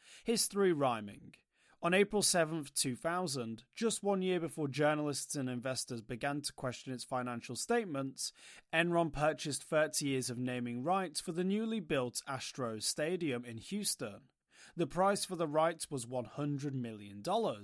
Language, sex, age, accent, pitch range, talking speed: English, male, 30-49, British, 125-175 Hz, 145 wpm